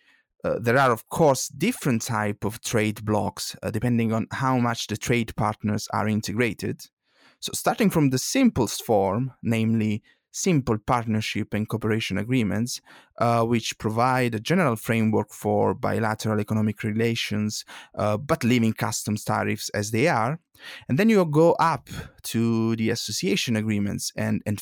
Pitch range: 105-135 Hz